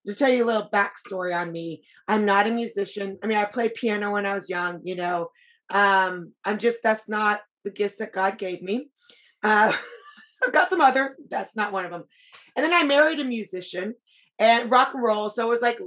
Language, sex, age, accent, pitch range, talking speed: English, female, 30-49, American, 200-250 Hz, 220 wpm